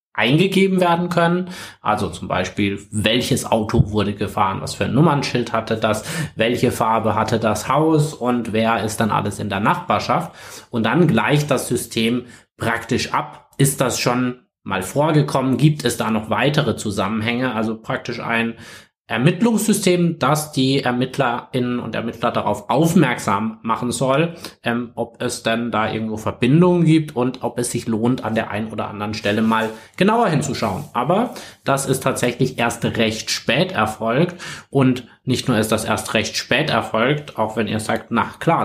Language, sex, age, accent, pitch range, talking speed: German, male, 20-39, German, 115-145 Hz, 165 wpm